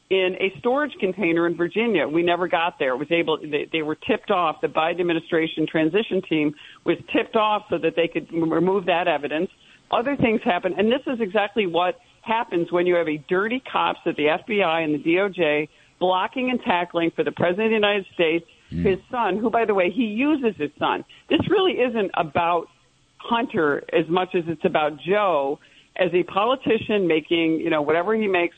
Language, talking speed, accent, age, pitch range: English, 195 wpm, American, 50-69, 165-205 Hz